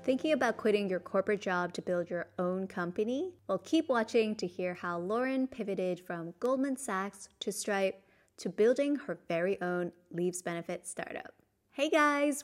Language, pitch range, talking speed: English, 175-235 Hz, 165 wpm